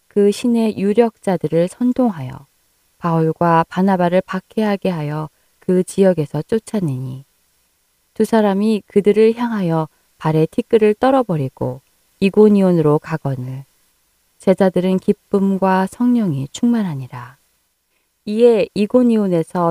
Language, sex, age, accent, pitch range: Korean, female, 20-39, native, 155-215 Hz